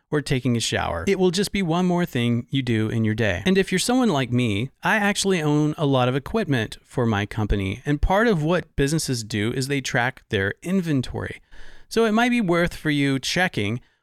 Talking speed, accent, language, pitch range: 220 wpm, American, English, 120-180 Hz